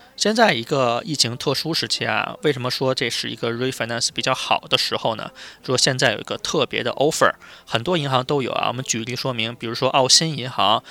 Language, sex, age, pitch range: Chinese, male, 20-39, 125-155 Hz